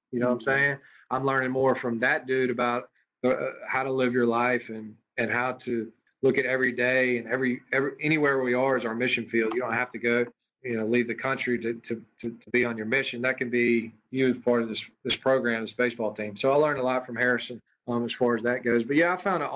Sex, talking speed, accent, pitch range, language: male, 260 wpm, American, 115-135 Hz, English